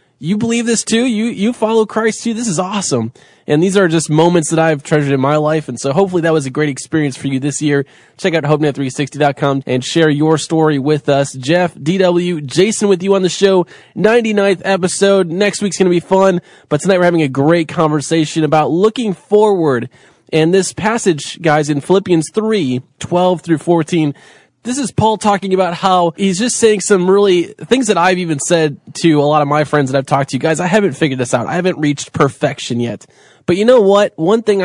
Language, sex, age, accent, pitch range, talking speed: English, male, 20-39, American, 150-195 Hz, 210 wpm